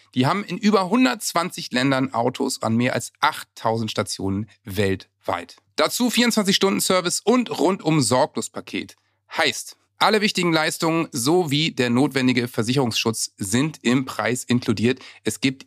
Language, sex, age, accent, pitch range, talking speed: German, male, 40-59, German, 125-170 Hz, 130 wpm